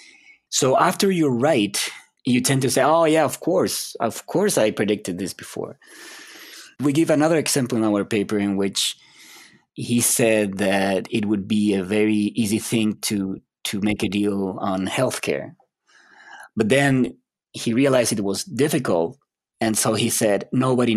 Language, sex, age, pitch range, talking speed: English, male, 20-39, 110-155 Hz, 160 wpm